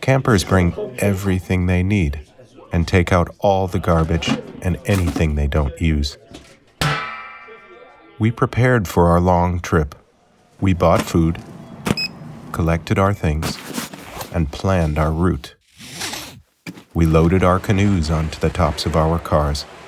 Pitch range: 75-95 Hz